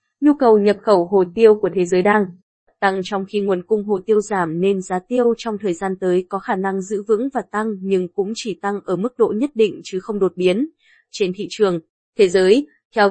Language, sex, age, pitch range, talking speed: Vietnamese, female, 20-39, 190-235 Hz, 235 wpm